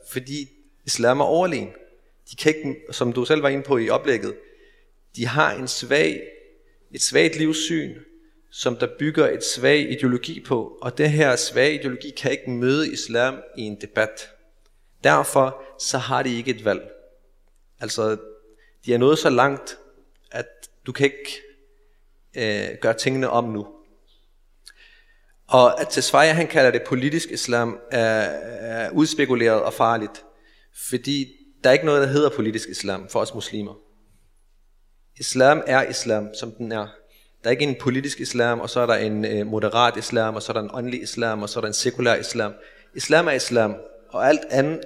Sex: male